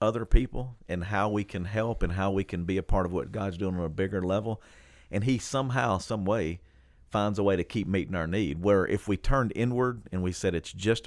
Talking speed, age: 245 wpm, 40-59